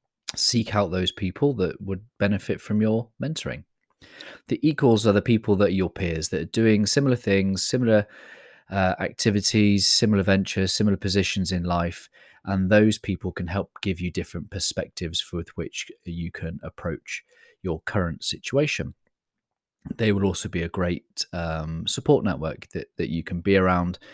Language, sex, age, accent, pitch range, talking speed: English, male, 30-49, British, 90-110 Hz, 160 wpm